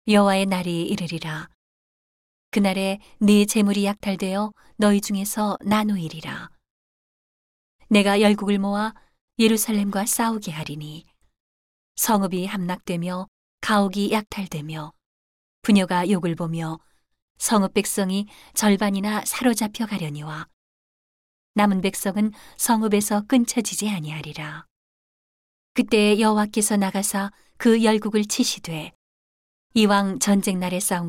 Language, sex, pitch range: Korean, female, 170-215 Hz